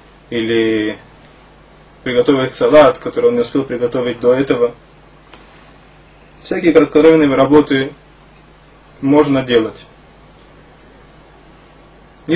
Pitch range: 130-160 Hz